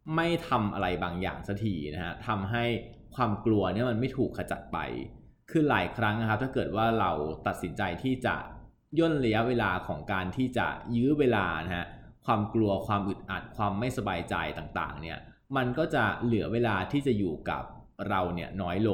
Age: 20-39